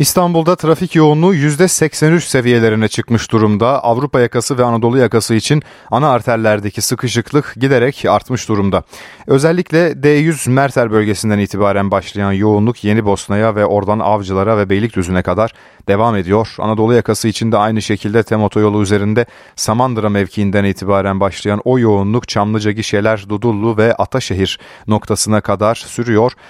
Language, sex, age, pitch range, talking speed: Turkish, male, 30-49, 100-120 Hz, 130 wpm